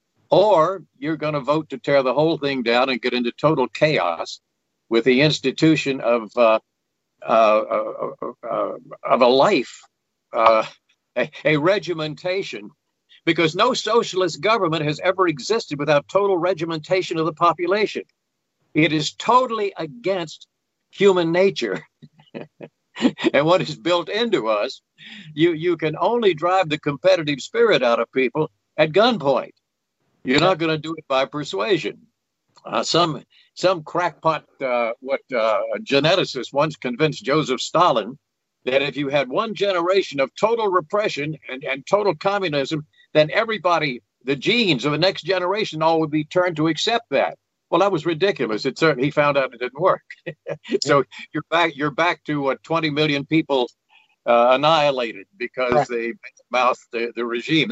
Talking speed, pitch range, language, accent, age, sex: 150 wpm, 135-185 Hz, English, American, 60-79, male